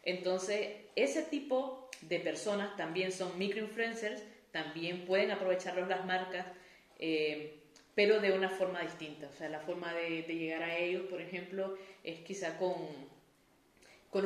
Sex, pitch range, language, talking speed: female, 165-210 Hz, Spanish, 145 wpm